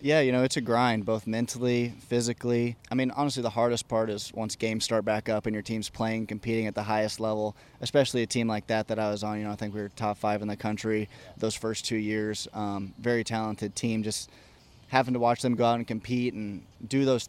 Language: English